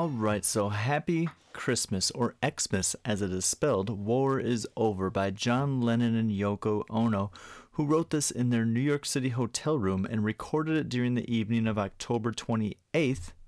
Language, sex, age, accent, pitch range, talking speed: English, male, 30-49, American, 105-130 Hz, 170 wpm